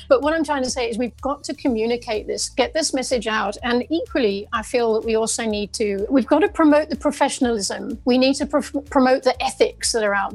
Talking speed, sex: 230 wpm, female